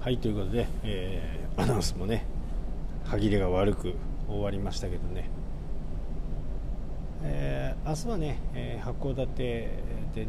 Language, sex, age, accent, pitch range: Japanese, male, 40-59, native, 80-125 Hz